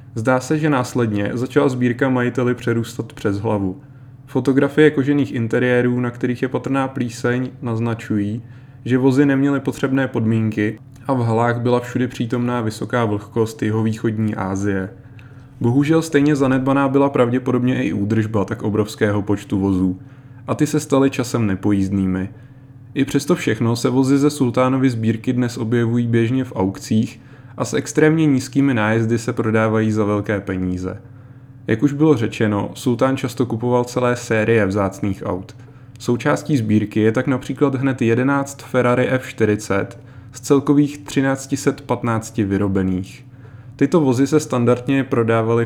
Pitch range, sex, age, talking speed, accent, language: 110-135 Hz, male, 20-39, 135 wpm, native, Czech